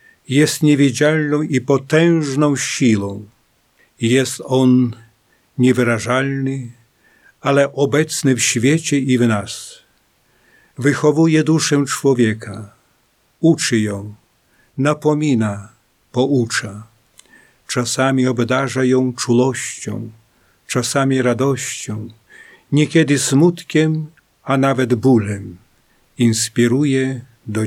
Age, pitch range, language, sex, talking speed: 50-69, 115-140 Hz, Polish, male, 75 wpm